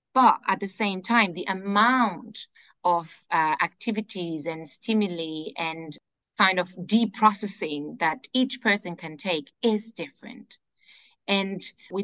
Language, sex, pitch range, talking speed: English, female, 165-210 Hz, 125 wpm